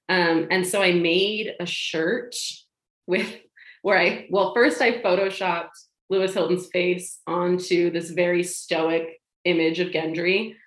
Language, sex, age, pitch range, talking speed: English, female, 20-39, 165-195 Hz, 135 wpm